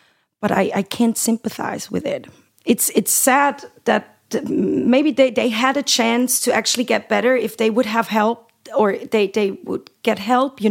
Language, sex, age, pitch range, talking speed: English, female, 30-49, 195-245 Hz, 185 wpm